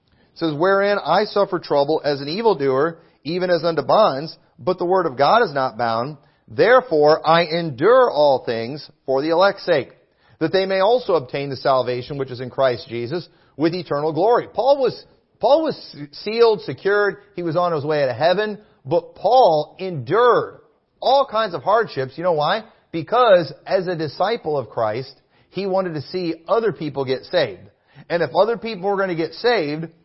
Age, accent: 40-59, American